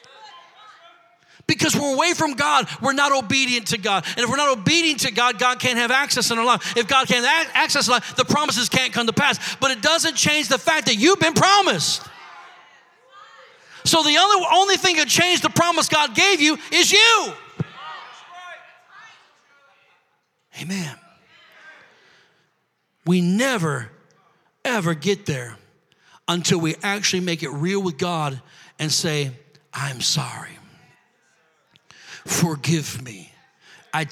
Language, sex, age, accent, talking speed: English, male, 40-59, American, 140 wpm